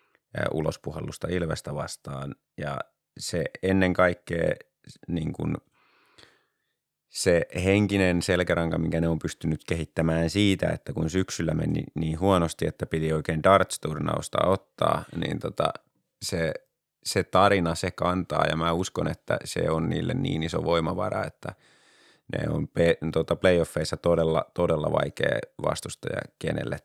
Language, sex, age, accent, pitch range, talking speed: Finnish, male, 30-49, native, 80-95 Hz, 120 wpm